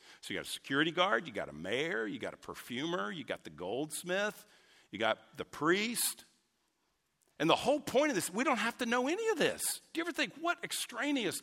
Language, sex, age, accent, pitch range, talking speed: English, male, 50-69, American, 160-230 Hz, 220 wpm